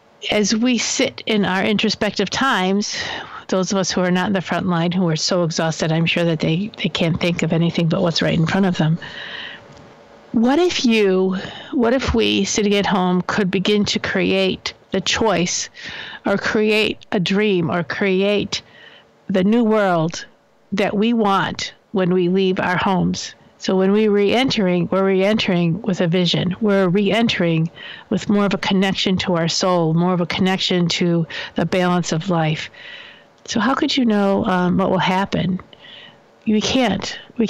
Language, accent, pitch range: English, American, 180-215 Hz